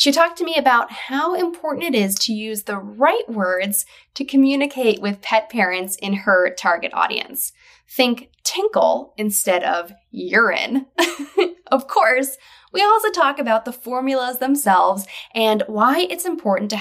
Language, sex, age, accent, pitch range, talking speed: English, female, 10-29, American, 195-290 Hz, 150 wpm